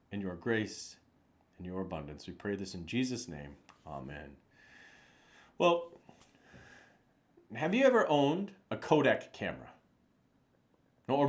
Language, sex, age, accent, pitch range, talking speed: English, male, 40-59, American, 105-140 Hz, 115 wpm